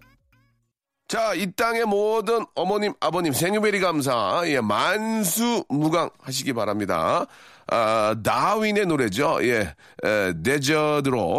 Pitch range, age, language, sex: 115-175 Hz, 40-59, Korean, male